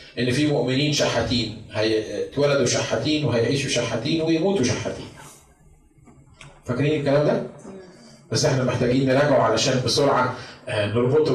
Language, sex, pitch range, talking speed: Arabic, male, 125-155 Hz, 110 wpm